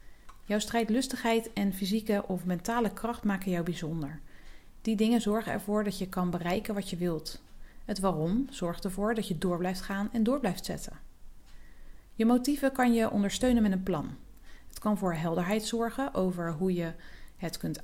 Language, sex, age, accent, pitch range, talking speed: Dutch, female, 40-59, Dutch, 175-220 Hz, 175 wpm